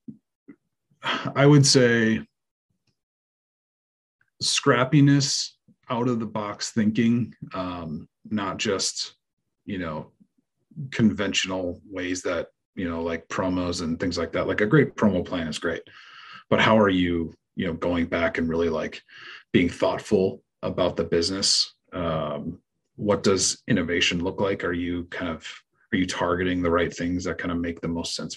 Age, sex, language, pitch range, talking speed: 30-49, male, English, 85-110 Hz, 150 wpm